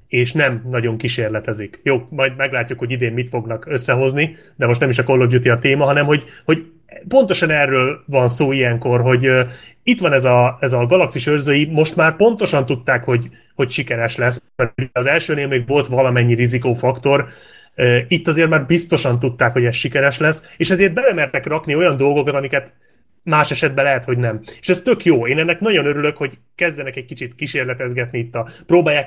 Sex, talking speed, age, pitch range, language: male, 185 wpm, 30-49, 125-155 Hz, Hungarian